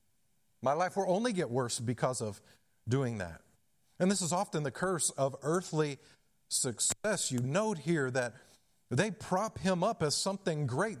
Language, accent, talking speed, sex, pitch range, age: English, American, 165 wpm, male, 125-175 Hz, 40-59